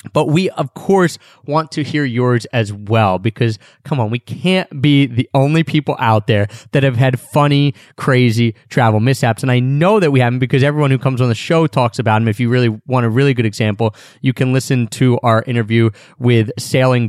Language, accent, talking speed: English, American, 210 wpm